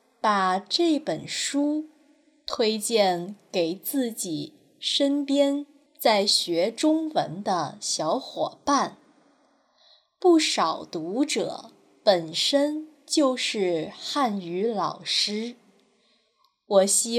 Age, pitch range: 20-39, 200-300 Hz